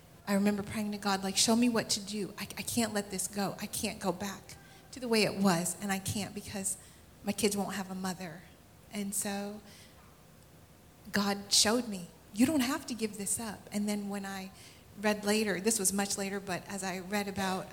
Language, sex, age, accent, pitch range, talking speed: English, female, 40-59, American, 190-210 Hz, 215 wpm